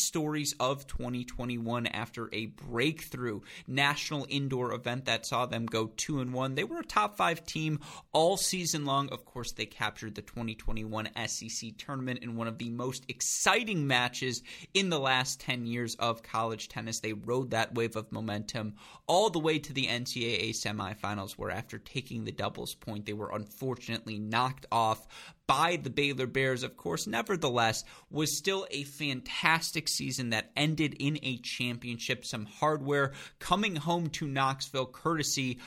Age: 30-49